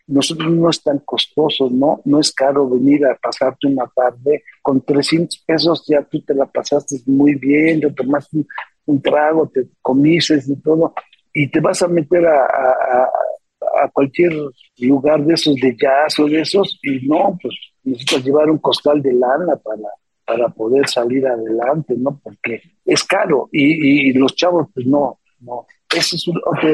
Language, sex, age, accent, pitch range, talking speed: Spanish, male, 50-69, Mexican, 130-165 Hz, 180 wpm